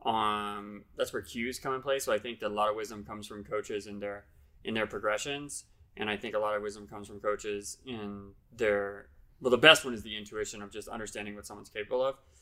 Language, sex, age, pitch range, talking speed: English, male, 20-39, 105-120 Hz, 235 wpm